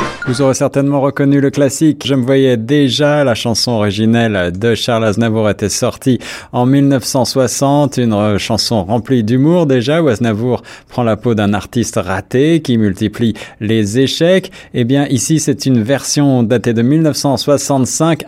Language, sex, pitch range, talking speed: French, male, 105-135 Hz, 160 wpm